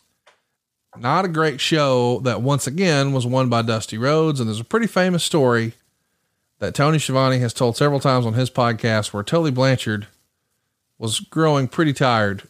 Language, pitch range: English, 115-150 Hz